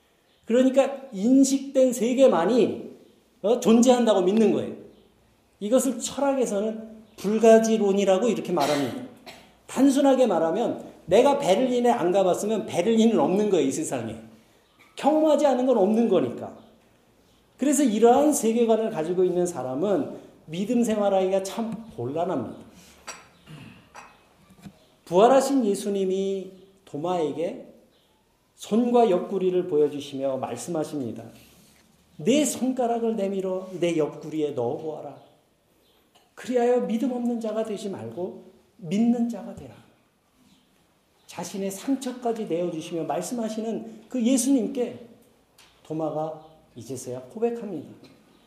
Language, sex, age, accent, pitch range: Korean, male, 40-59, native, 165-240 Hz